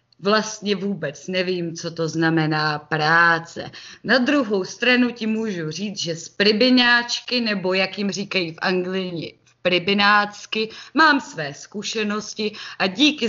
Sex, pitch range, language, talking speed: female, 175-235 Hz, Czech, 130 wpm